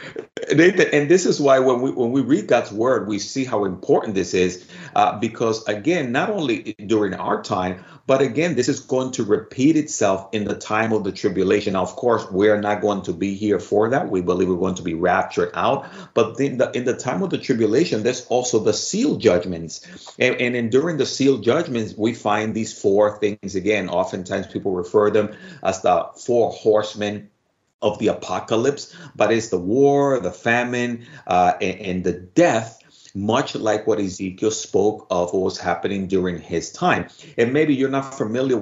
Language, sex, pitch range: English, male, 100-130 Hz